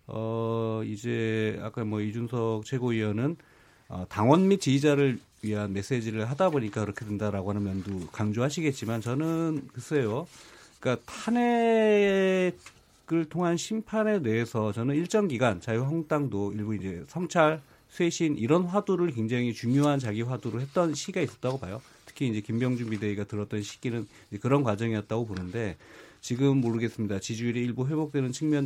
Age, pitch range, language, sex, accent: 30-49, 110-155 Hz, Korean, male, native